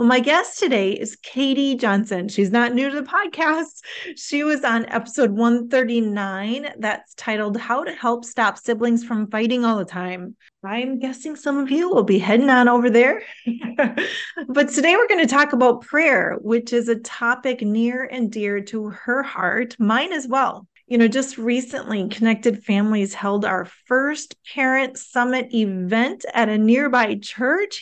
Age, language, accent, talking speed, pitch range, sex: 30-49, English, American, 165 wpm, 215-270 Hz, female